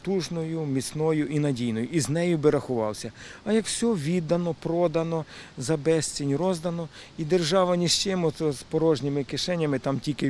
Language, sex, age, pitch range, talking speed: Russian, male, 50-69, 150-180 Hz, 165 wpm